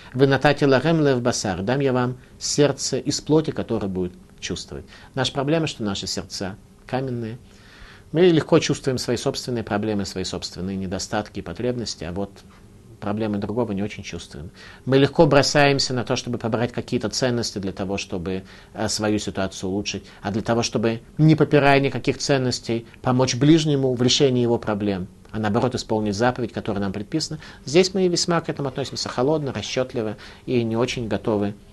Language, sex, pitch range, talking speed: Russian, male, 100-130 Hz, 160 wpm